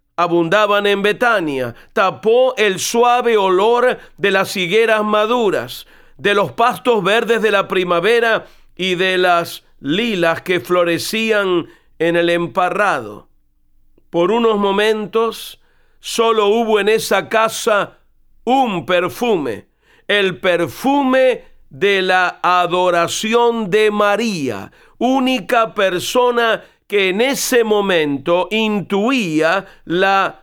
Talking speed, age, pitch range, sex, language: 105 wpm, 50-69, 180-230 Hz, male, Spanish